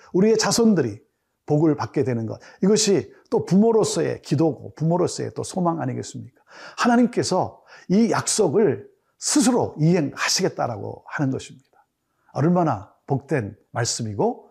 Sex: male